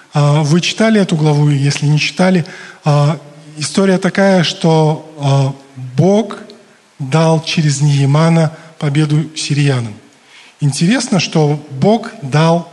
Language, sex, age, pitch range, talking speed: Russian, male, 20-39, 145-180 Hz, 95 wpm